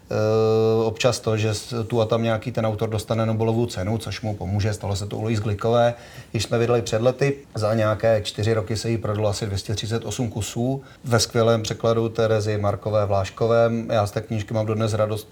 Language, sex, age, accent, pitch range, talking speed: Czech, male, 30-49, native, 110-120 Hz, 190 wpm